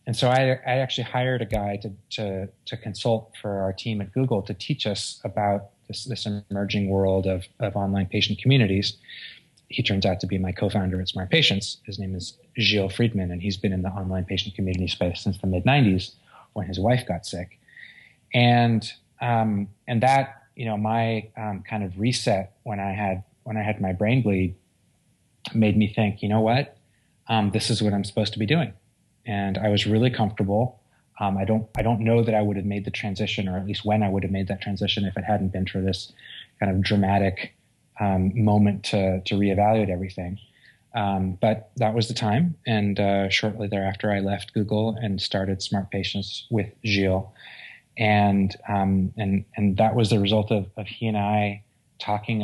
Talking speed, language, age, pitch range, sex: 200 wpm, English, 20-39, 100-115 Hz, male